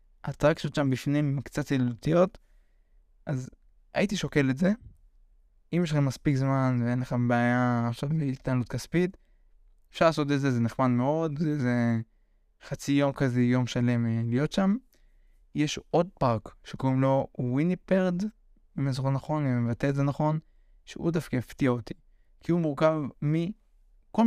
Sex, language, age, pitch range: male, Hebrew, 20-39, 125-150 Hz